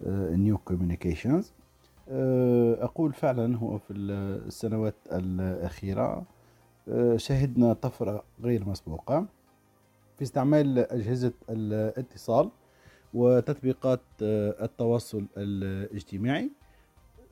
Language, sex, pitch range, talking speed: Arabic, male, 100-130 Hz, 60 wpm